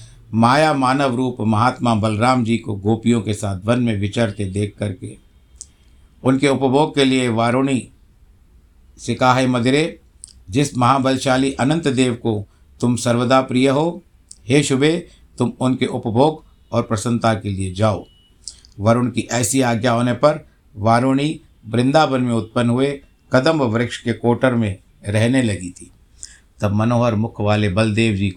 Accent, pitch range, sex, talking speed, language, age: native, 95-125 Hz, male, 140 wpm, Hindi, 60-79